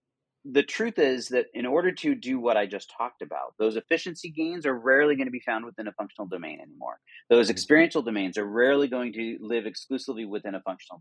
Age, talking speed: 40-59, 215 wpm